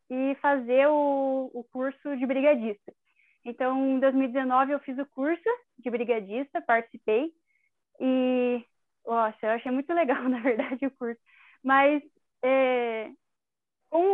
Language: Portuguese